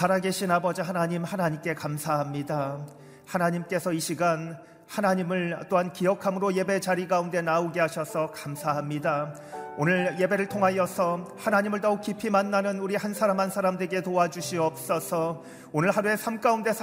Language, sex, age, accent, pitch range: Korean, male, 40-59, native, 150-210 Hz